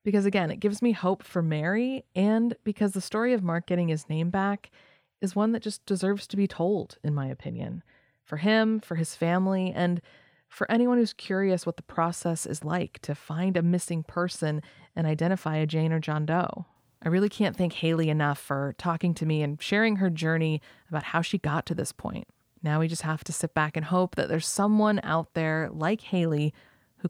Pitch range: 155-190 Hz